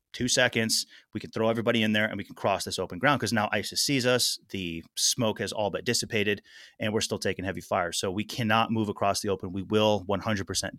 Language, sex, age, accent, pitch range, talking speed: English, male, 30-49, American, 95-110 Hz, 235 wpm